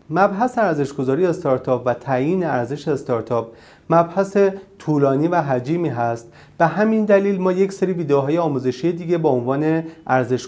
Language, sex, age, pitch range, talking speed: Persian, male, 40-59, 125-175 Hz, 145 wpm